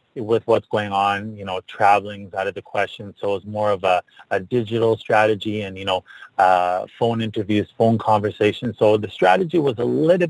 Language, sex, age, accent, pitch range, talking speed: English, male, 30-49, American, 100-120 Hz, 190 wpm